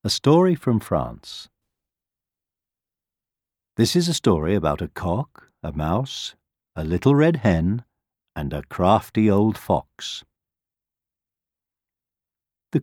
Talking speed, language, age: 110 wpm, English, 60-79